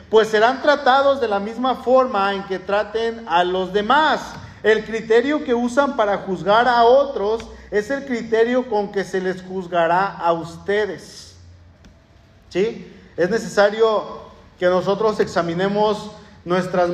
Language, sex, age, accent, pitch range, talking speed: Spanish, male, 40-59, Mexican, 175-225 Hz, 135 wpm